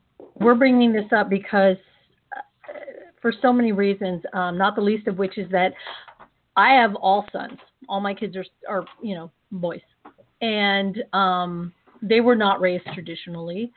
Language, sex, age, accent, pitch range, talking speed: English, female, 40-59, American, 185-220 Hz, 155 wpm